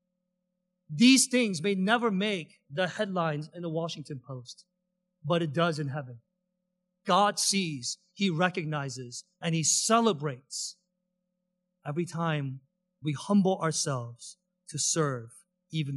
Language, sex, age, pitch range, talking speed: English, male, 40-59, 165-185 Hz, 115 wpm